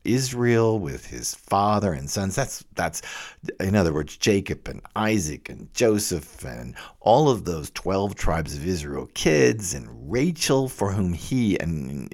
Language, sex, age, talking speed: English, male, 50-69, 155 wpm